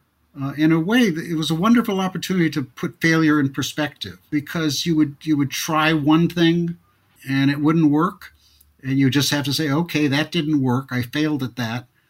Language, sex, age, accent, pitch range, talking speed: English, male, 60-79, American, 125-170 Hz, 200 wpm